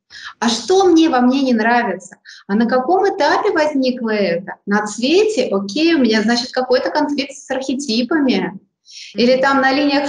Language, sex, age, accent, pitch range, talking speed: Russian, female, 20-39, native, 215-270 Hz, 160 wpm